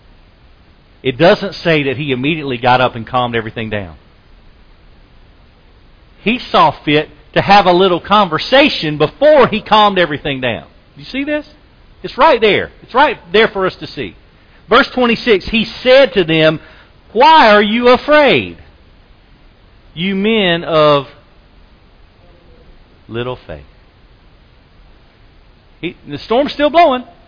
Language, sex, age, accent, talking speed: English, male, 50-69, American, 130 wpm